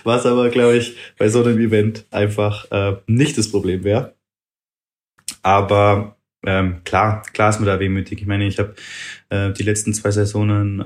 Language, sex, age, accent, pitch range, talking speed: German, male, 20-39, German, 105-115 Hz, 170 wpm